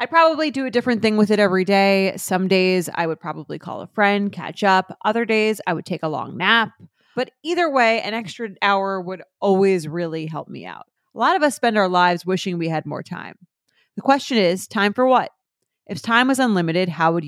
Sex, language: female, English